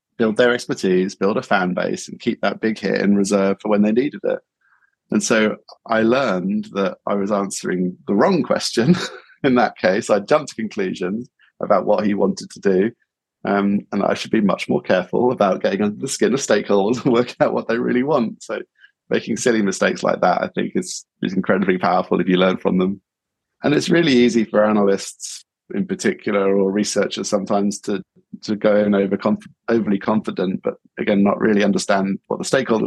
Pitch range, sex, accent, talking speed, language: 100-110 Hz, male, British, 195 wpm, English